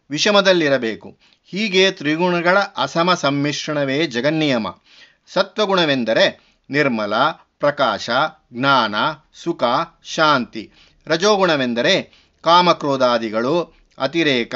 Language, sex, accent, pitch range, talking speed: Kannada, male, native, 140-175 Hz, 60 wpm